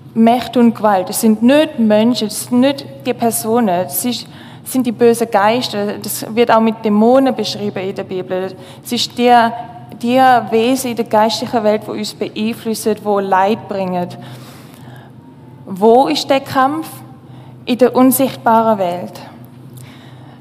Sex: female